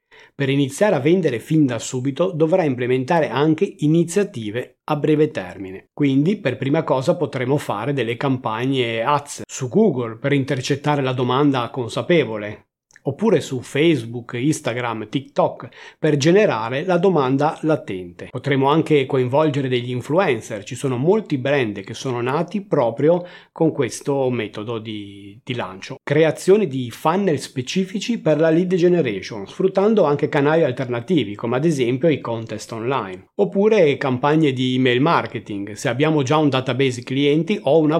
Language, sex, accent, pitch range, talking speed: Italian, male, native, 125-160 Hz, 140 wpm